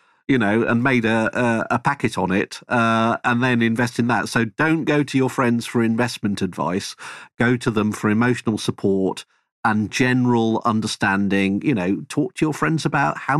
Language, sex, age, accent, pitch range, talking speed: English, male, 50-69, British, 110-135 Hz, 190 wpm